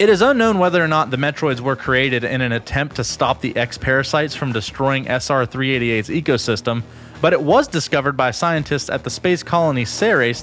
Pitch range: 120-175 Hz